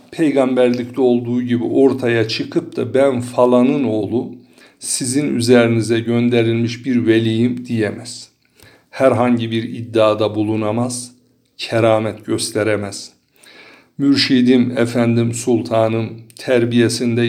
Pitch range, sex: 115-135 Hz, male